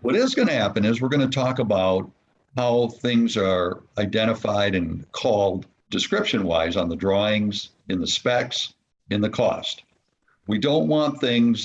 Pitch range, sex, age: 100-125 Hz, male, 60-79